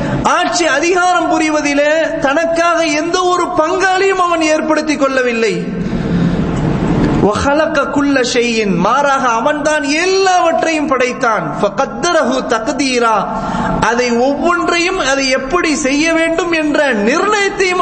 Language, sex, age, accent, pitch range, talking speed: English, male, 30-49, Indian, 260-335 Hz, 115 wpm